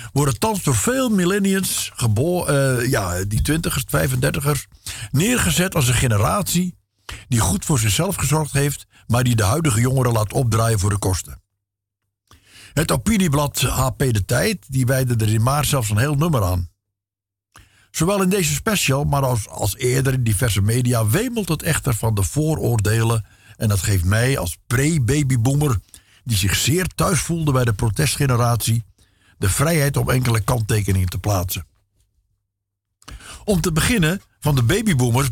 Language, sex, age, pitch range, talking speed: Dutch, male, 60-79, 100-145 Hz, 155 wpm